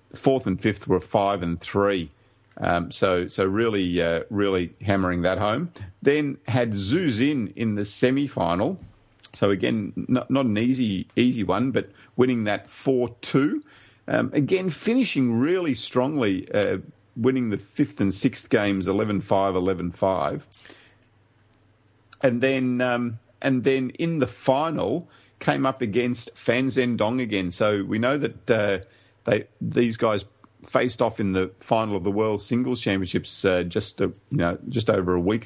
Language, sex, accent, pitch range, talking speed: English, male, Australian, 100-125 Hz, 155 wpm